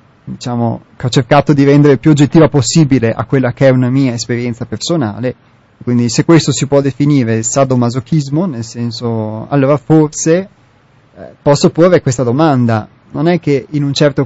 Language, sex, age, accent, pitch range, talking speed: Italian, male, 30-49, native, 120-145 Hz, 170 wpm